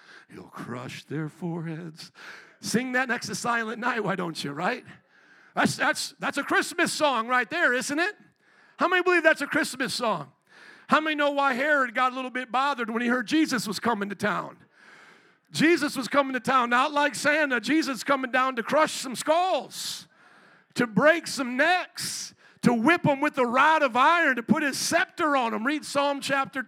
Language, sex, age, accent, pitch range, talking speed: English, male, 50-69, American, 215-290 Hz, 195 wpm